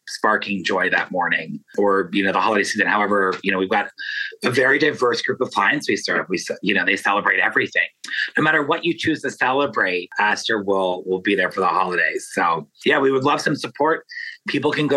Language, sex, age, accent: English, male, 30-49, American